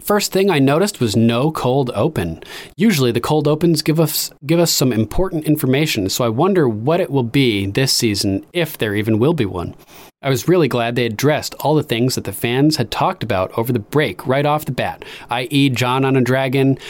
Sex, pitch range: male, 115-145 Hz